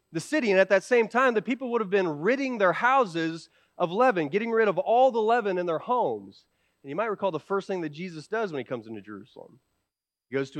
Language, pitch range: English, 125-195 Hz